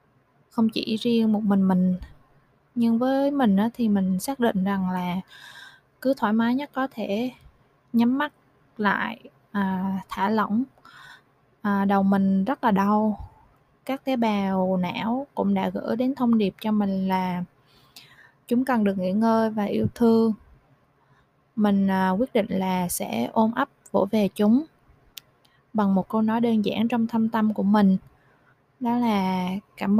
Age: 20-39